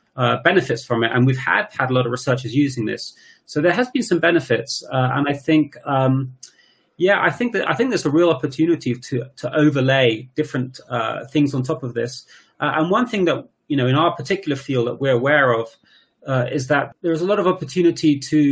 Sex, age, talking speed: male, 30-49, 225 wpm